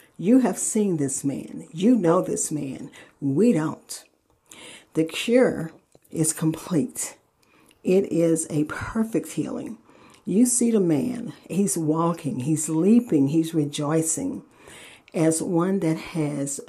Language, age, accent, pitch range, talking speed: English, 50-69, American, 155-210 Hz, 120 wpm